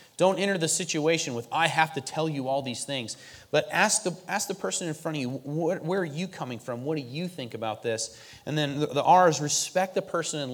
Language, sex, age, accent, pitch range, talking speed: English, male, 30-49, American, 125-160 Hz, 255 wpm